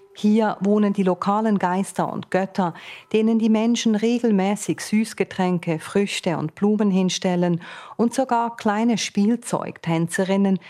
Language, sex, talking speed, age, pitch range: German, female, 110 wpm, 40-59, 170-215 Hz